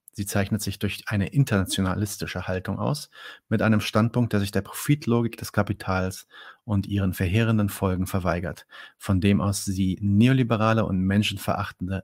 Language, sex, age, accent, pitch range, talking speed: German, male, 40-59, German, 95-110 Hz, 145 wpm